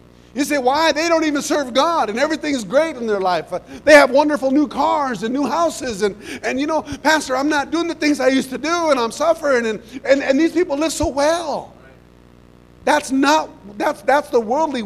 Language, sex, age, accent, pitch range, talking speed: English, male, 50-69, American, 195-290 Hz, 215 wpm